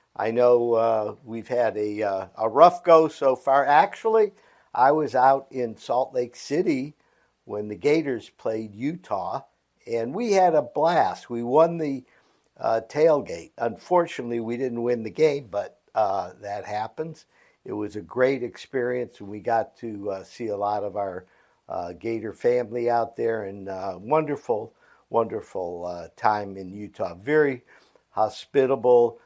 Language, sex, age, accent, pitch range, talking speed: English, male, 50-69, American, 105-140 Hz, 155 wpm